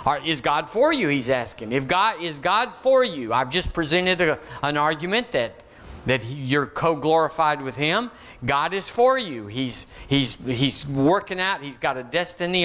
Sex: male